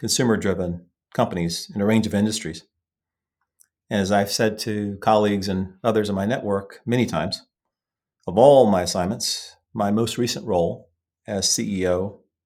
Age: 40-59